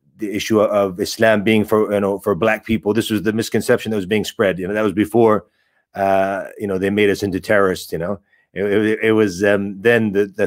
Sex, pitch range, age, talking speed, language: male, 100-115 Hz, 30-49, 240 wpm, English